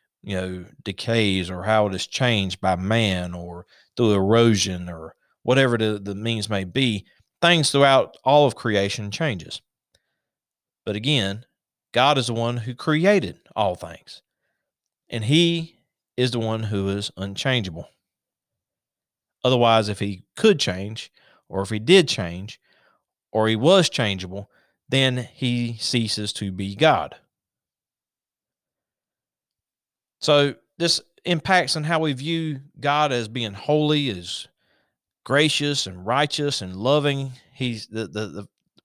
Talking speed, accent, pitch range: 130 wpm, American, 100-140 Hz